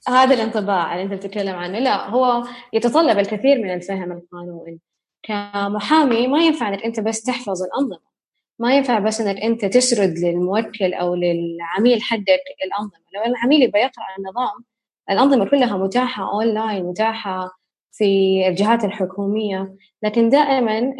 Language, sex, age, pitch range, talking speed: Arabic, female, 20-39, 190-240 Hz, 130 wpm